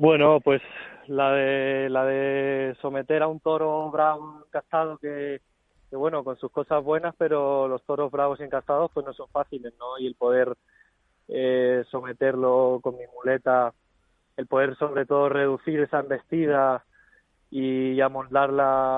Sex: male